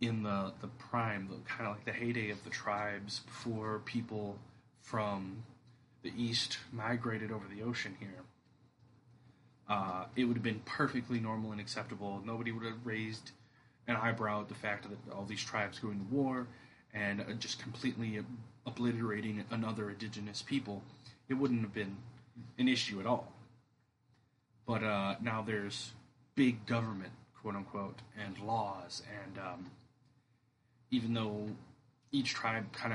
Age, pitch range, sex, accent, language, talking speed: 30-49, 105-125 Hz, male, American, English, 140 wpm